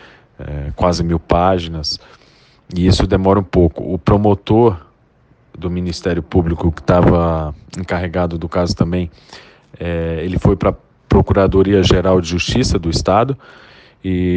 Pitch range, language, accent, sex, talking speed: 85-100 Hz, English, Brazilian, male, 135 wpm